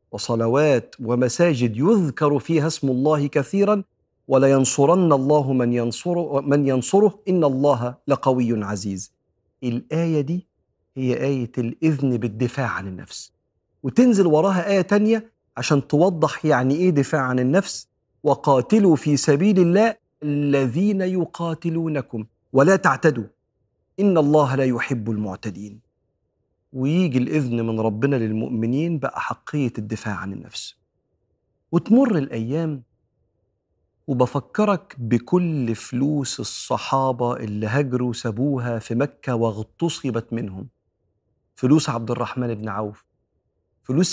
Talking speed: 105 wpm